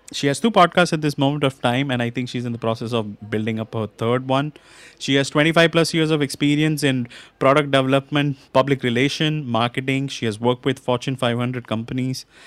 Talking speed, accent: 200 wpm, Indian